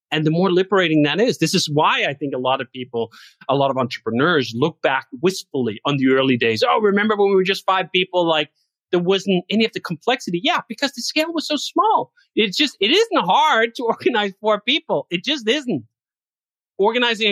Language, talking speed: English, 210 wpm